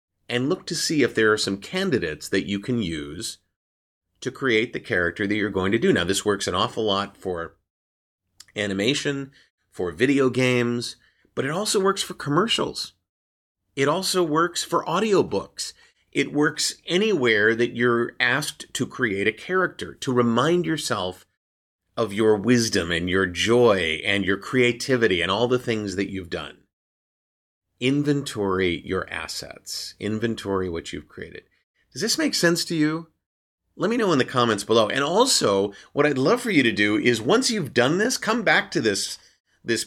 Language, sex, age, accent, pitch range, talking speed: English, male, 30-49, American, 95-150 Hz, 170 wpm